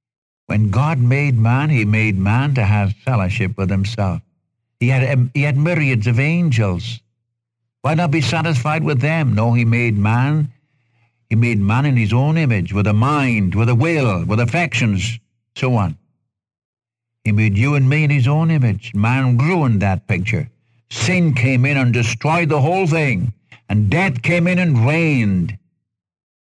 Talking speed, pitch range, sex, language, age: 170 wpm, 110-130 Hz, male, English, 60-79